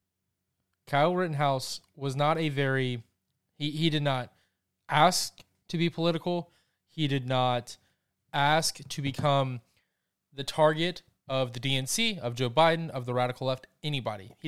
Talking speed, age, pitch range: 140 wpm, 20-39, 105-160 Hz